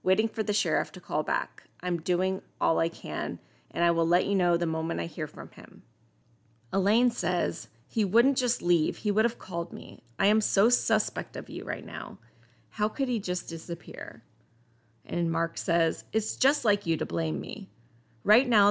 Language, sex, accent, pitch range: English, female, American, 160-220 Hz